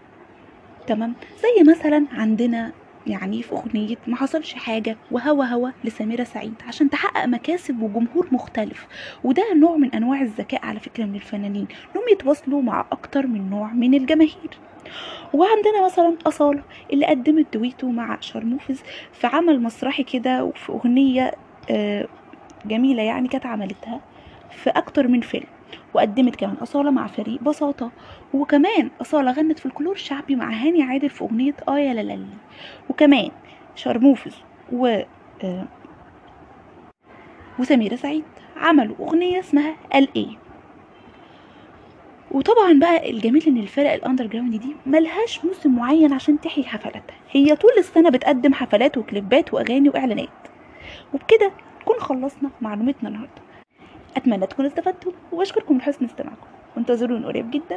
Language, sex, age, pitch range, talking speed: Arabic, female, 20-39, 240-315 Hz, 130 wpm